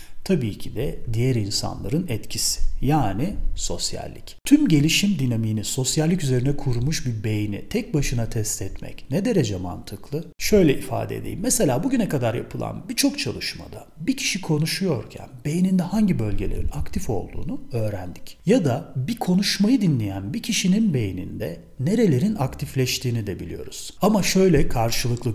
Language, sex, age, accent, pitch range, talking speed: Turkish, male, 40-59, native, 110-165 Hz, 135 wpm